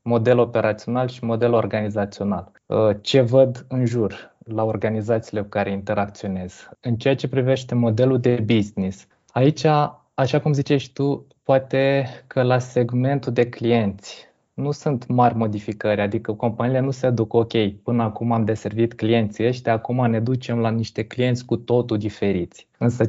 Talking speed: 150 wpm